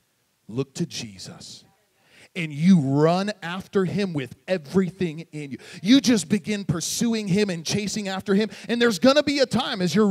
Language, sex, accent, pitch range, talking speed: English, male, American, 200-280 Hz, 180 wpm